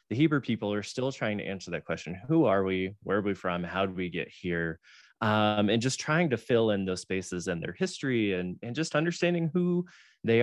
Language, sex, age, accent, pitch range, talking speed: English, male, 20-39, American, 95-125 Hz, 230 wpm